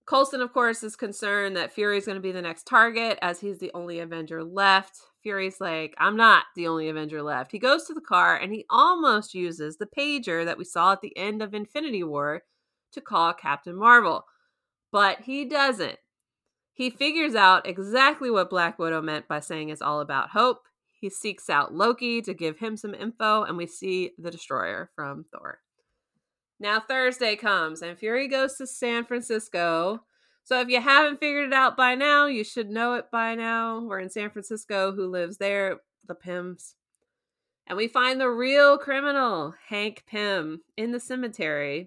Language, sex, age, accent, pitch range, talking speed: English, female, 30-49, American, 180-245 Hz, 185 wpm